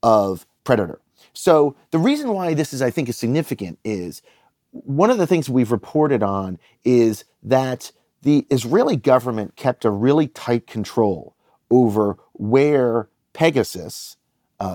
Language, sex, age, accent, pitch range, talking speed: English, male, 40-59, American, 115-150 Hz, 140 wpm